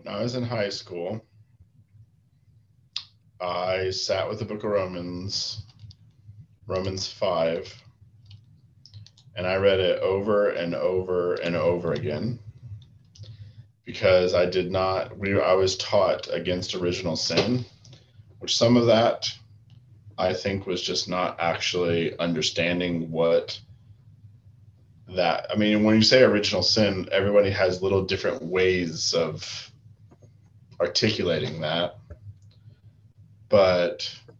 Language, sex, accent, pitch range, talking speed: English, male, American, 95-115 Hz, 115 wpm